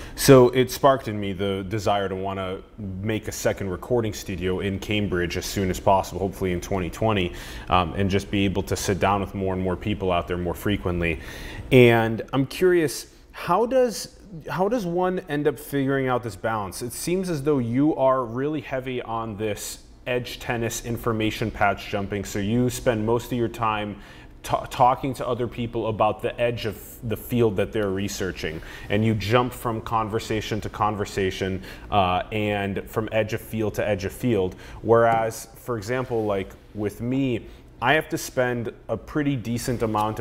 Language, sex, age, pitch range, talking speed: English, male, 30-49, 100-125 Hz, 180 wpm